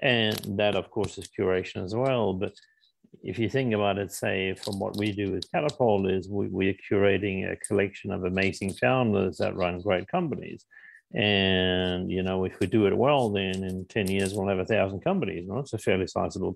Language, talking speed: English, 195 wpm